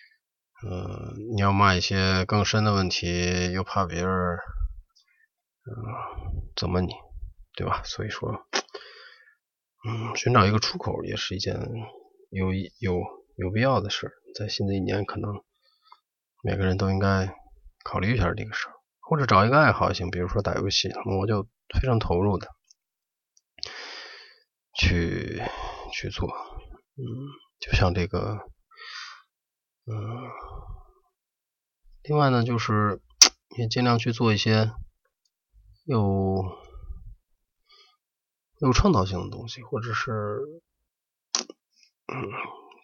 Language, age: Chinese, 20-39